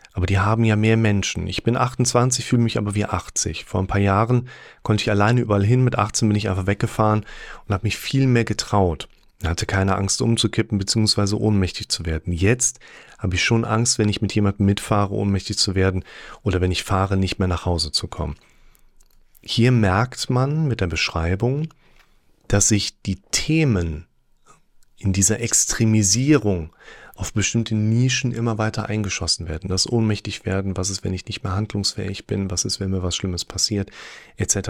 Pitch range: 95-115 Hz